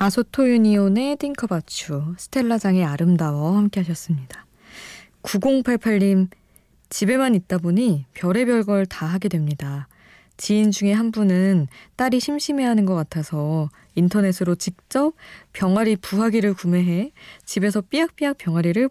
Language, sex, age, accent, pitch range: Korean, female, 20-39, native, 160-215 Hz